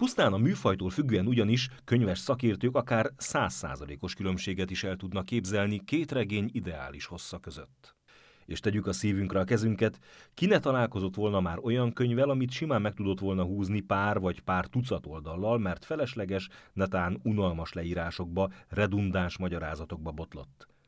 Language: Hungarian